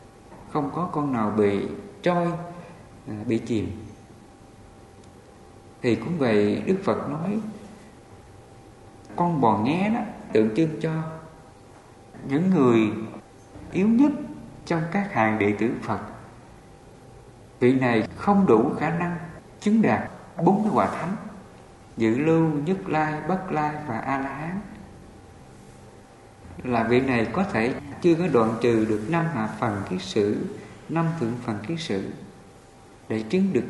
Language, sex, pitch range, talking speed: English, male, 110-175 Hz, 130 wpm